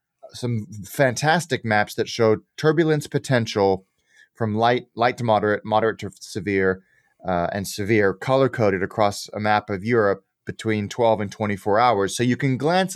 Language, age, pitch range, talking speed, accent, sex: English, 30-49, 105-130 Hz, 155 wpm, American, male